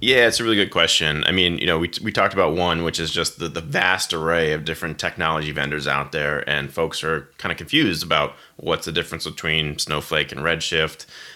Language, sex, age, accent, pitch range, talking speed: English, male, 30-49, American, 75-85 Hz, 220 wpm